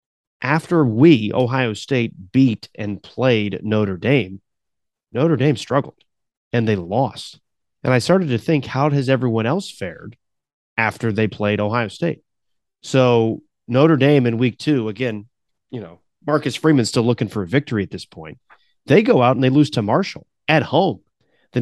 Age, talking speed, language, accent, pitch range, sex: 30-49, 165 wpm, English, American, 110-145 Hz, male